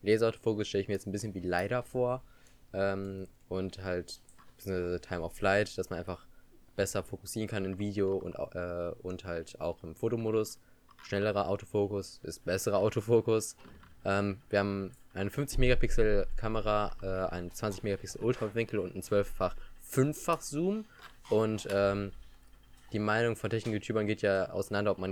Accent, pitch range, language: German, 95-120 Hz, German